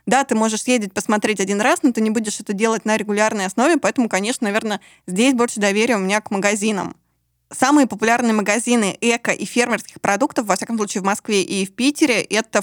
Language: Russian